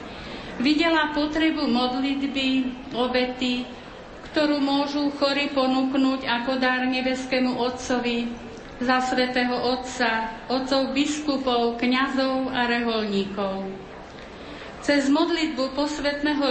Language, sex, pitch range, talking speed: Slovak, female, 245-275 Hz, 85 wpm